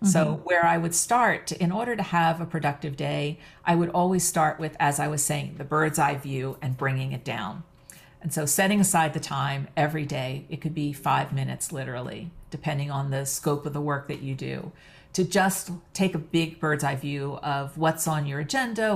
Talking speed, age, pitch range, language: 210 wpm, 50-69, 140-170 Hz, English